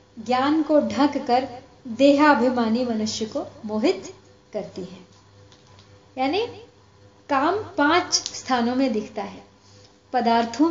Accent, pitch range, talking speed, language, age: native, 210-290 Hz, 95 wpm, Hindi, 30-49